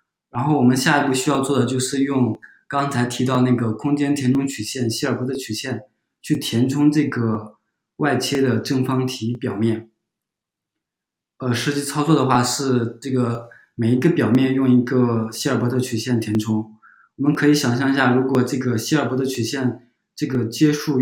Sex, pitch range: male, 120-145 Hz